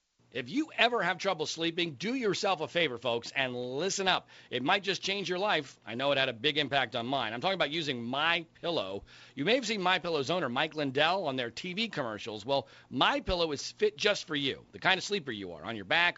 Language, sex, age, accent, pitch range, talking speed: English, male, 40-59, American, 145-205 Hz, 240 wpm